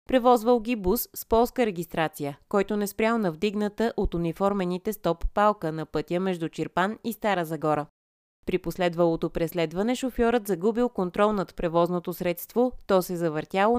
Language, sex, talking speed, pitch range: Bulgarian, female, 145 wpm, 165-225 Hz